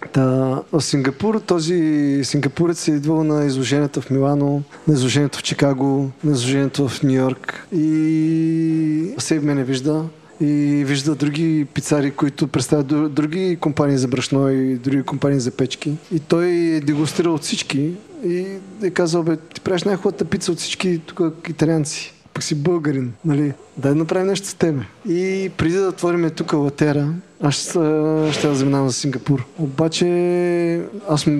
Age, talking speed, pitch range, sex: 20-39, 155 wpm, 140-165 Hz, male